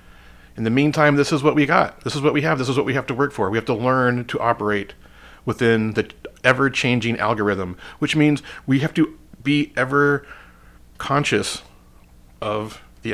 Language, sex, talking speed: English, male, 185 wpm